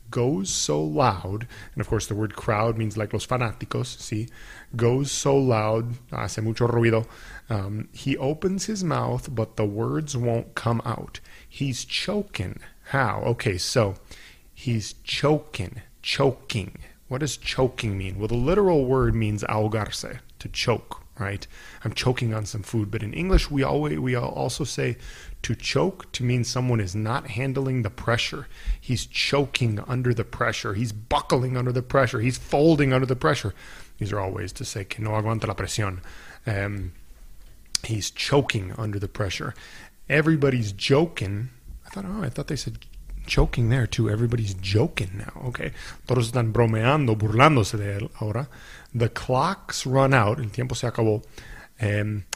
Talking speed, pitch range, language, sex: 160 wpm, 110-135 Hz, English, male